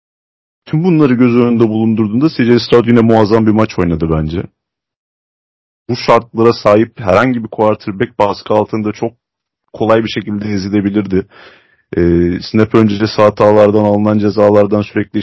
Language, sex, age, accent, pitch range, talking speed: Turkish, male, 30-49, native, 95-115 Hz, 125 wpm